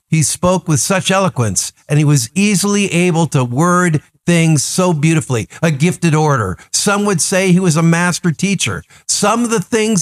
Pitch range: 145-185 Hz